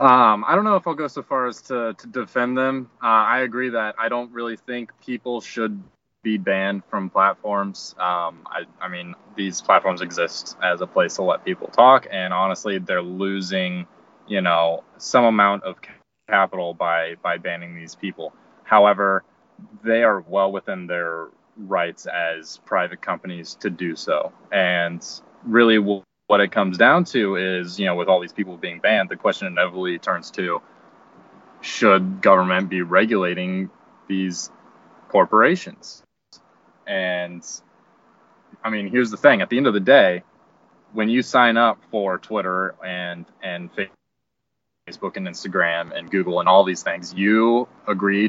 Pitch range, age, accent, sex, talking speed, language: 90-115 Hz, 20-39, American, male, 160 wpm, English